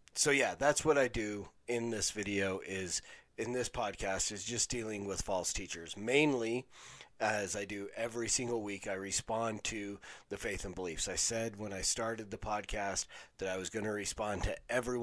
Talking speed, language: 190 wpm, English